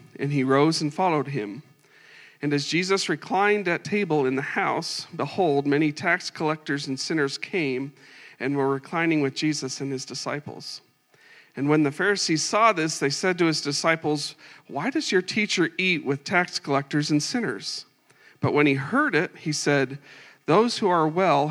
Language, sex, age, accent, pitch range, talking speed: English, male, 40-59, American, 140-175 Hz, 175 wpm